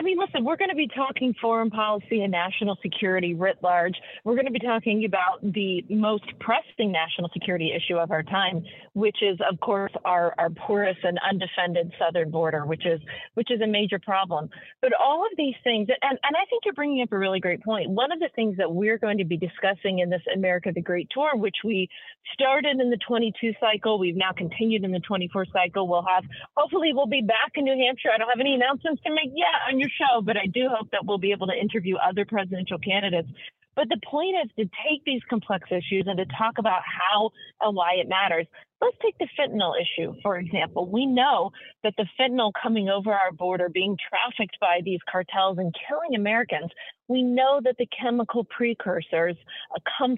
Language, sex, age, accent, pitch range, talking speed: English, female, 40-59, American, 185-250 Hz, 210 wpm